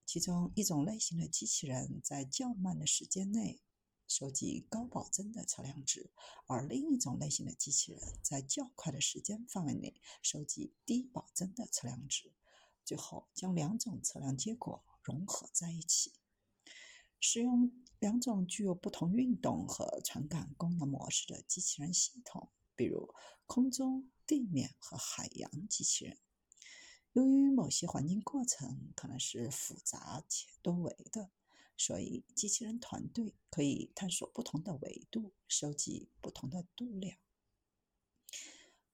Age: 50-69